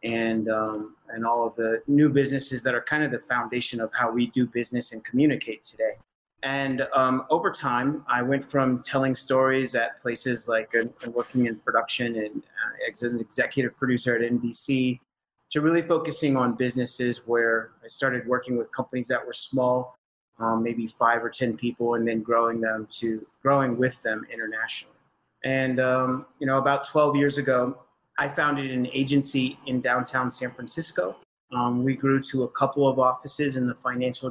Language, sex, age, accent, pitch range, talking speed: English, male, 30-49, American, 120-135 Hz, 185 wpm